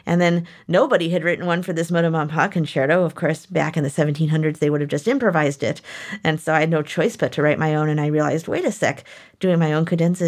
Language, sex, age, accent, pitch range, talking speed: English, female, 30-49, American, 155-180 Hz, 255 wpm